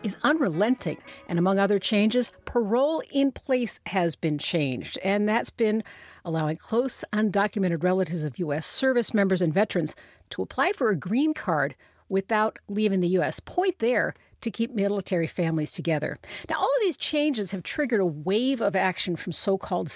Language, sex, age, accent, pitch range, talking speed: English, female, 50-69, American, 170-235 Hz, 165 wpm